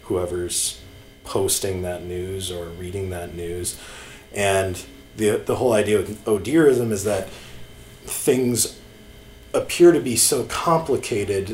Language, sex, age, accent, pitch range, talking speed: English, male, 30-49, American, 95-115 Hz, 125 wpm